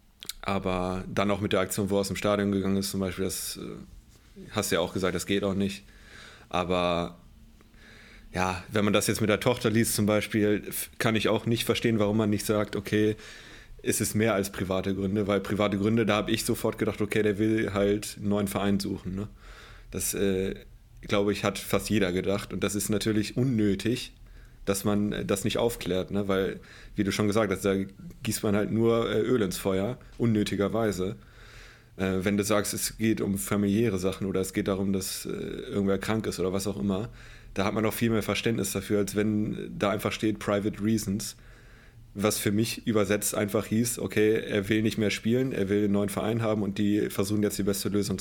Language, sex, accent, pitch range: German, male, German, 100-110 Hz